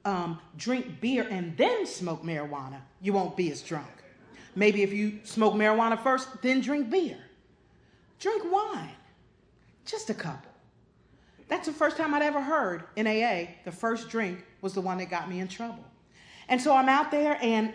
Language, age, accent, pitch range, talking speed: English, 40-59, American, 185-245 Hz, 170 wpm